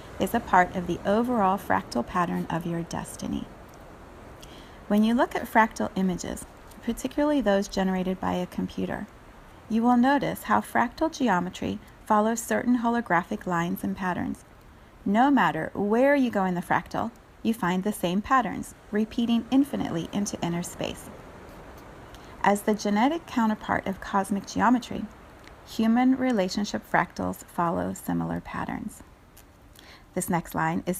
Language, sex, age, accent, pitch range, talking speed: English, female, 30-49, American, 185-235 Hz, 135 wpm